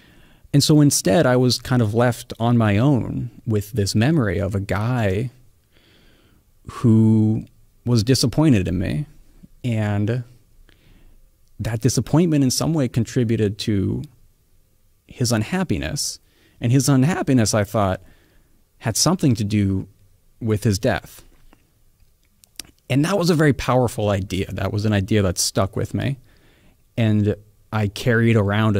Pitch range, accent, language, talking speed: 100-125 Hz, American, English, 130 wpm